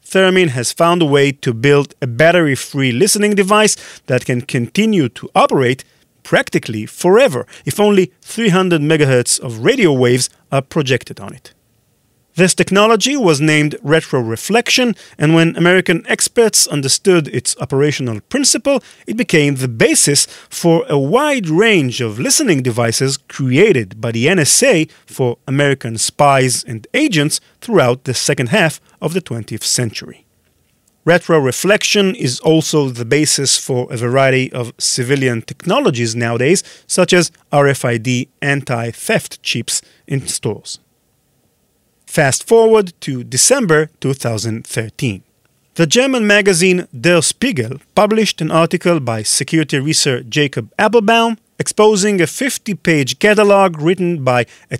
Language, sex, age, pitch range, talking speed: English, male, 40-59, 130-185 Hz, 125 wpm